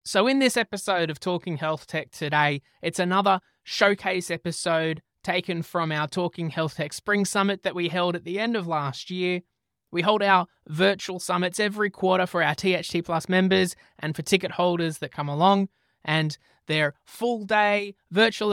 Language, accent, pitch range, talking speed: English, Australian, 155-195 Hz, 175 wpm